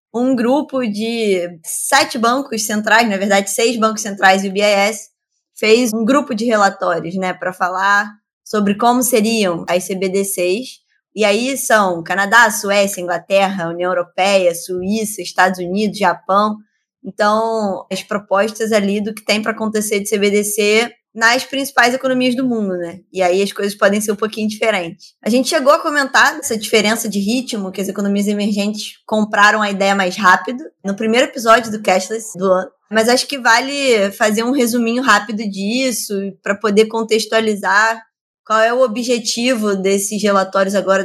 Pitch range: 195-225 Hz